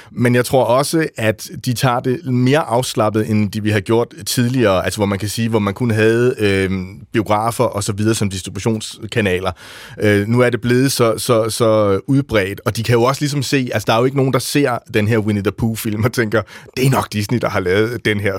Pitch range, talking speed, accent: 105-130 Hz, 240 wpm, native